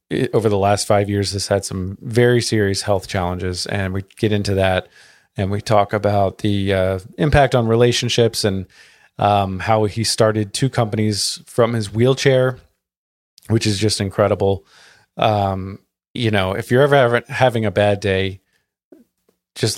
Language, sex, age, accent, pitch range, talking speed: English, male, 30-49, American, 95-110 Hz, 155 wpm